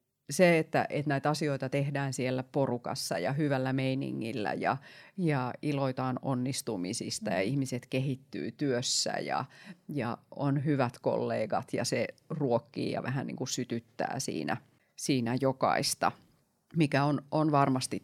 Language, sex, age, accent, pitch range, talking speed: Finnish, female, 30-49, native, 130-155 Hz, 130 wpm